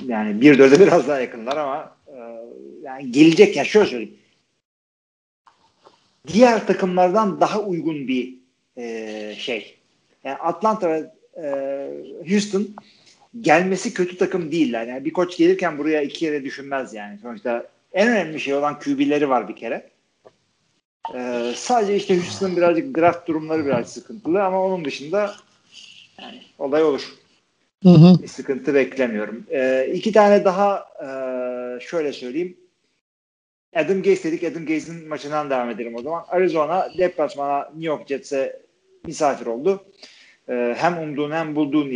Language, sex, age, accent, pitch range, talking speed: Turkish, male, 40-59, native, 135-195 Hz, 130 wpm